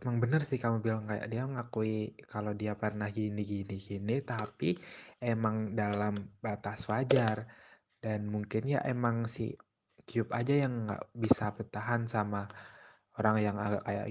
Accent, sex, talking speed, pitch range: native, male, 135 wpm, 105-125 Hz